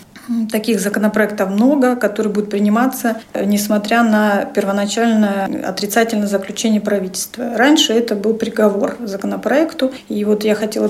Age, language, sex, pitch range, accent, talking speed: 40-59, Russian, female, 210-235 Hz, native, 115 wpm